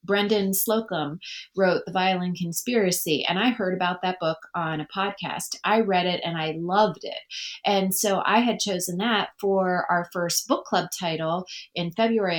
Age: 30-49